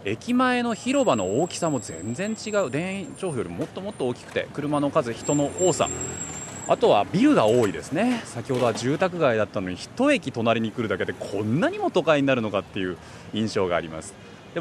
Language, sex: Japanese, male